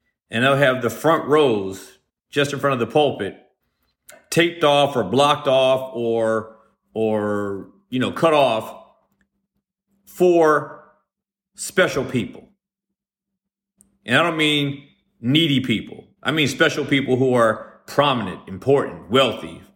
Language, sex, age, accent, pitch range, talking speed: English, male, 40-59, American, 110-150 Hz, 125 wpm